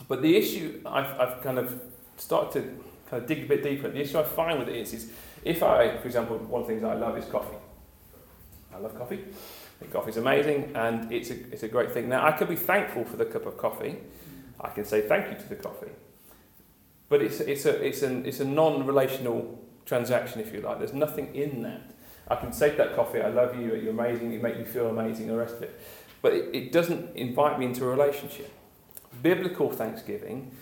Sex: male